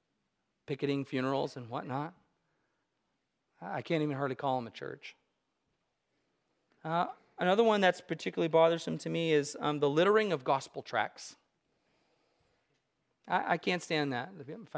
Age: 40-59